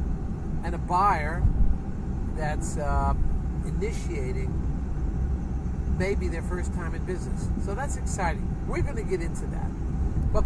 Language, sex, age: English, male, 50-69